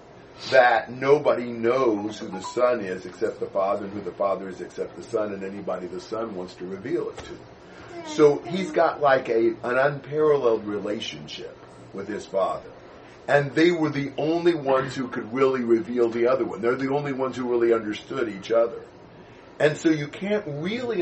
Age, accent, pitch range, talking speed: 40-59, American, 110-155 Hz, 185 wpm